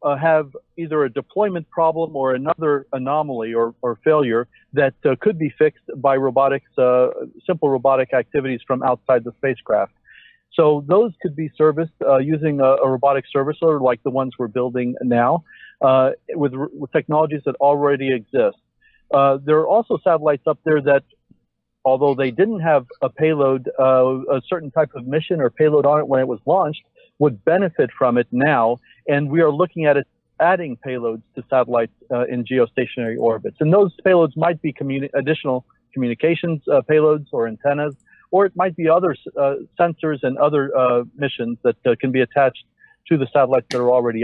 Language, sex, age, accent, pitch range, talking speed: English, male, 50-69, American, 130-160 Hz, 180 wpm